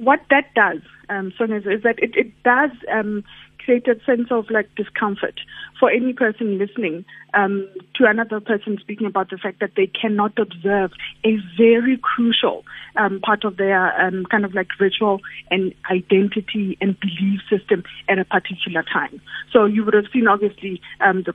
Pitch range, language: 195-235 Hz, English